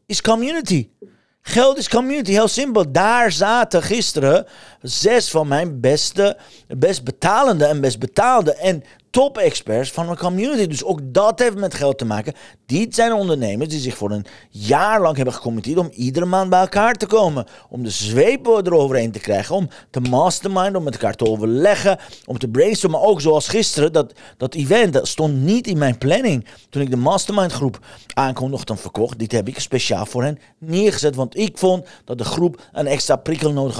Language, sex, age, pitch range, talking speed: Dutch, male, 40-59, 135-195 Hz, 185 wpm